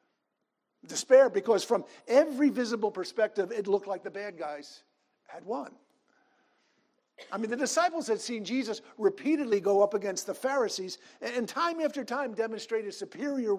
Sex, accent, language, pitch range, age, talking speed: male, American, English, 195-285 Hz, 50-69, 145 wpm